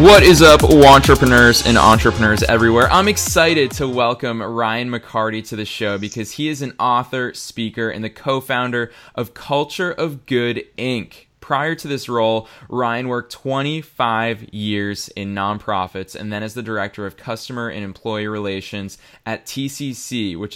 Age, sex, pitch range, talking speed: 20-39, male, 105-130 Hz, 155 wpm